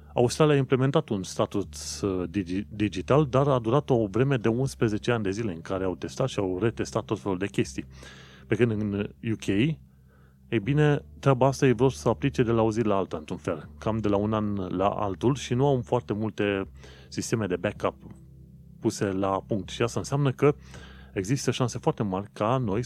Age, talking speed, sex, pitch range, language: 30-49, 200 wpm, male, 95-125 Hz, Romanian